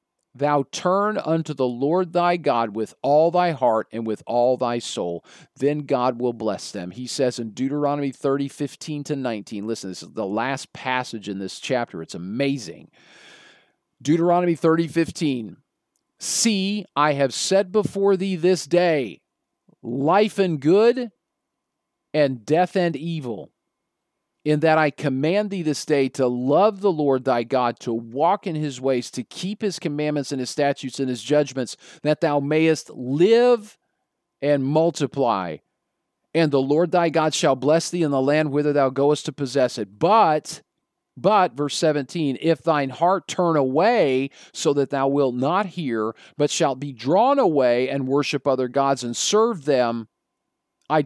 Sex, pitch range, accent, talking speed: male, 130-165 Hz, American, 160 wpm